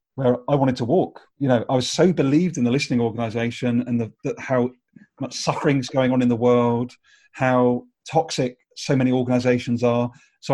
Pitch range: 125-160 Hz